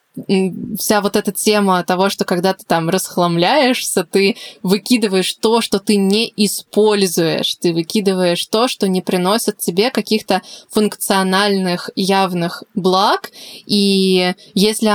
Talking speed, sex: 120 wpm, female